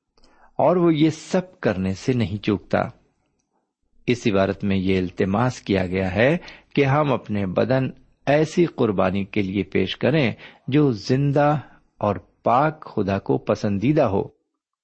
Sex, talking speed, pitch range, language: male, 140 wpm, 100-145 Hz, Urdu